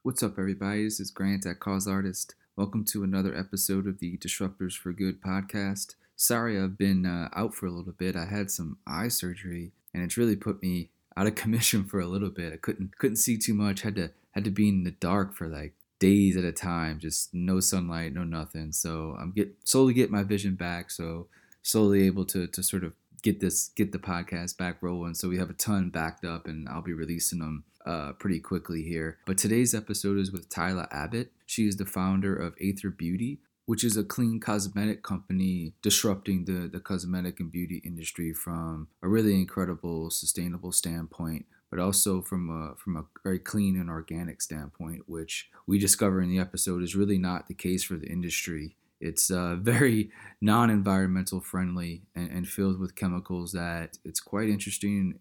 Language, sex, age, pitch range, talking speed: English, male, 20-39, 85-100 Hz, 195 wpm